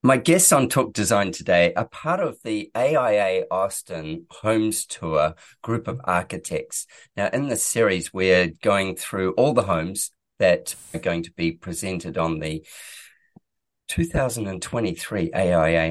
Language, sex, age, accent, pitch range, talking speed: English, male, 40-59, Australian, 80-115 Hz, 140 wpm